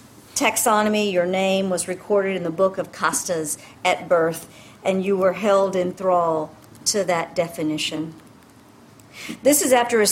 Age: 50-69